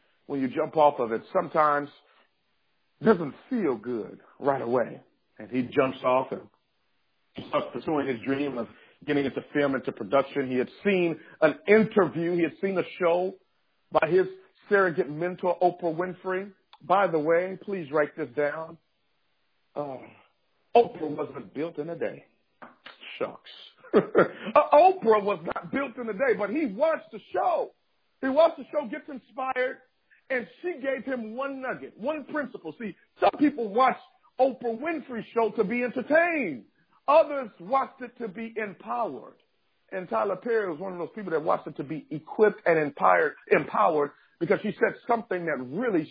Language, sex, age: English, male, 50-69